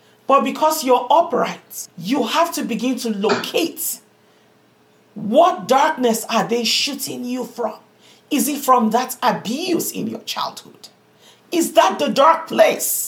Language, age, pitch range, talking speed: English, 40-59, 245-330 Hz, 140 wpm